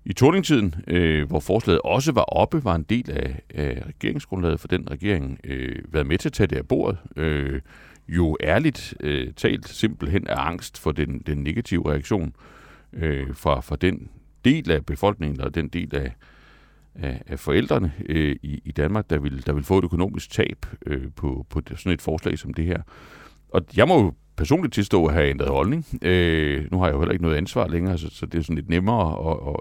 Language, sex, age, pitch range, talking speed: Danish, male, 60-79, 75-105 Hz, 205 wpm